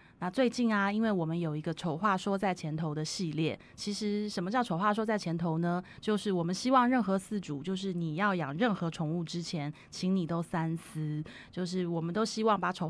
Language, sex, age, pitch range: Chinese, female, 20-39, 165-205 Hz